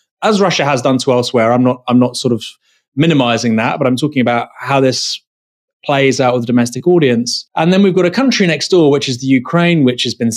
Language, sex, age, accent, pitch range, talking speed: English, male, 20-39, British, 120-150 Hz, 235 wpm